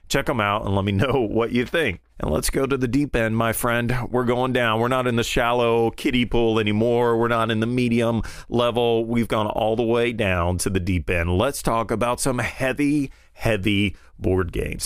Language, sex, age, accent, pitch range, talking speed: English, male, 30-49, American, 100-130 Hz, 220 wpm